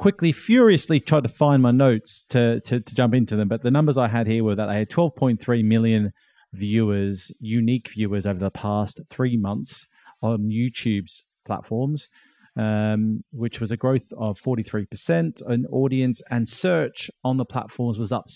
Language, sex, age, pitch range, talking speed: English, male, 30-49, 110-135 Hz, 170 wpm